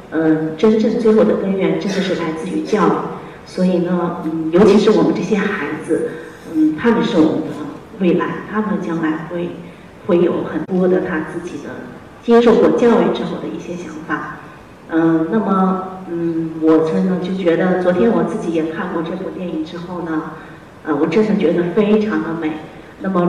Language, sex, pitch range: Chinese, female, 160-195 Hz